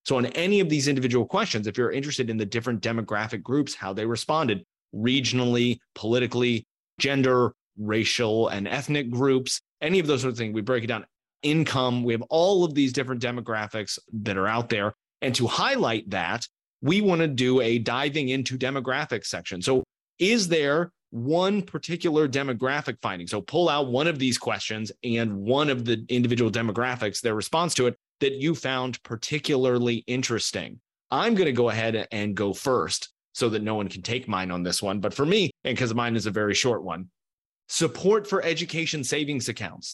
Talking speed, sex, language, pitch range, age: 185 wpm, male, English, 110-140 Hz, 30-49